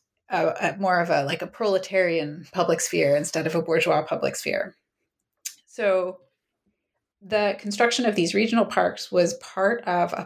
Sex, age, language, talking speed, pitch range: female, 30-49, English, 150 wpm, 165-195 Hz